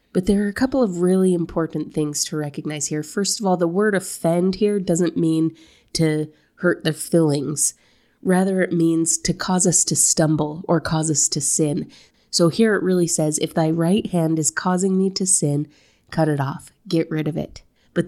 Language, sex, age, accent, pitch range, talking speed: English, female, 30-49, American, 155-185 Hz, 200 wpm